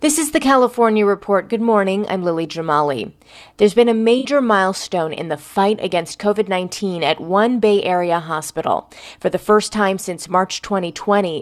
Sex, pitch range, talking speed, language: female, 175-225 Hz, 170 wpm, English